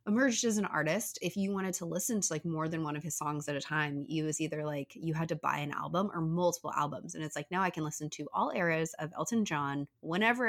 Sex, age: female, 20-39